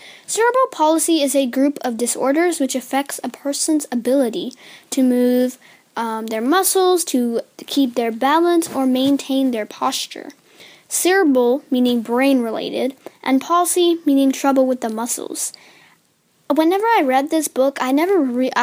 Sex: female